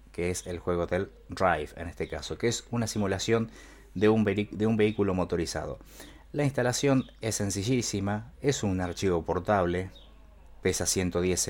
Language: Spanish